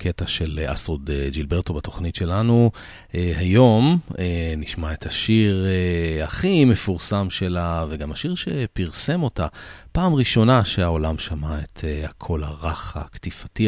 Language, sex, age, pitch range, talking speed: Hebrew, male, 40-59, 80-105 Hz, 125 wpm